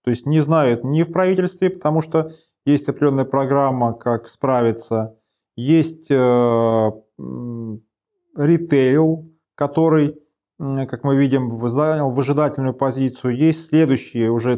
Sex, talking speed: male, 110 wpm